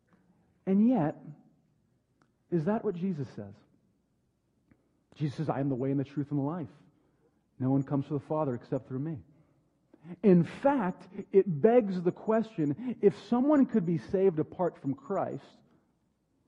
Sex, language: male, English